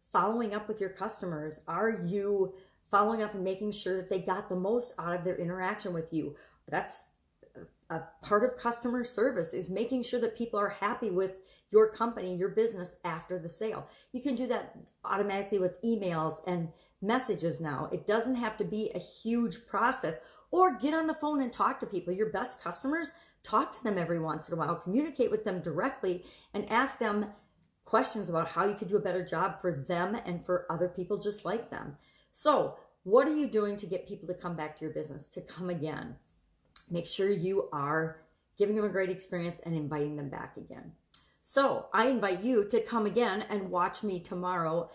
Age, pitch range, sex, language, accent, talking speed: 40-59, 180-225 Hz, female, English, American, 200 wpm